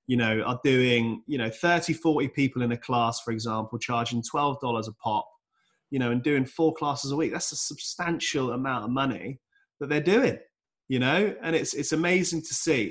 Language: English